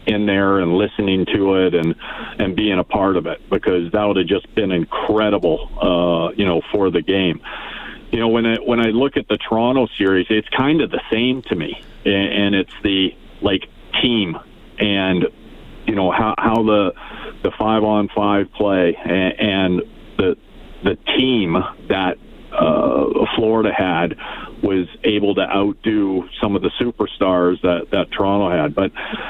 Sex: male